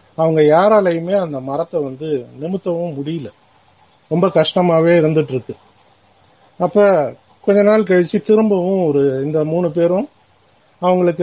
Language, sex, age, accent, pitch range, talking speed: Tamil, male, 50-69, native, 130-175 Hz, 110 wpm